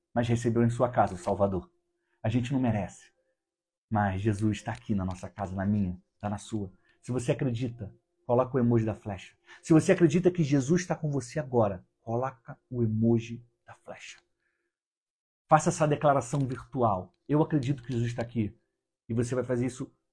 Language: Portuguese